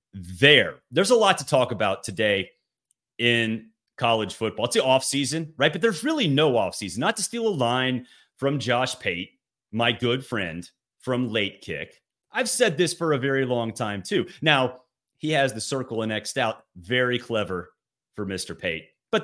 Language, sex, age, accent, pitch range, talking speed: English, male, 30-49, American, 110-150 Hz, 180 wpm